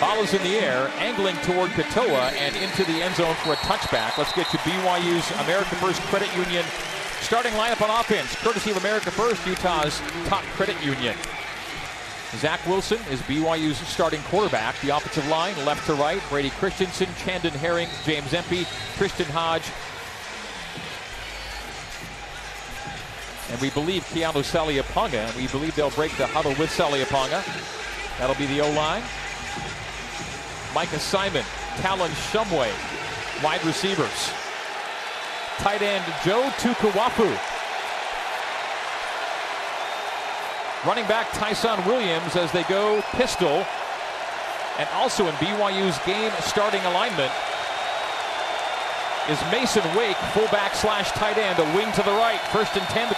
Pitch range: 150-195 Hz